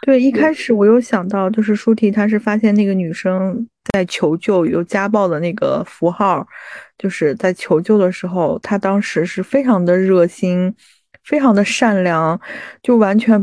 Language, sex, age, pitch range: Chinese, female, 20-39, 185-225 Hz